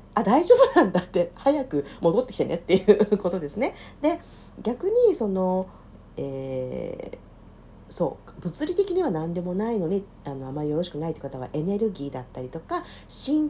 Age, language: 50-69, Japanese